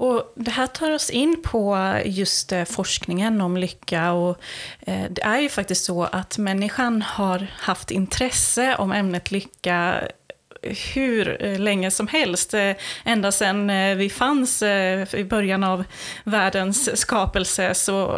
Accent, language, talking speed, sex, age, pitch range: native, Swedish, 130 wpm, female, 20-39, 180-220 Hz